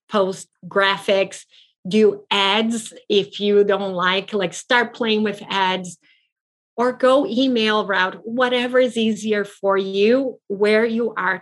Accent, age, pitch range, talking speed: American, 40-59, 185-225 Hz, 130 wpm